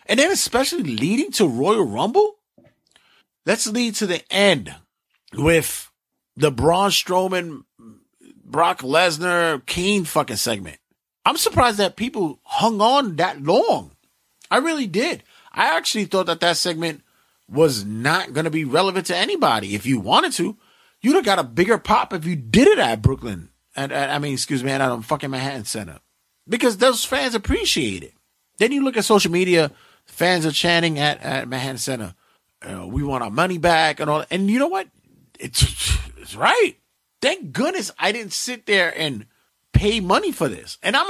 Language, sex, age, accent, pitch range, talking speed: English, male, 30-49, American, 135-210 Hz, 175 wpm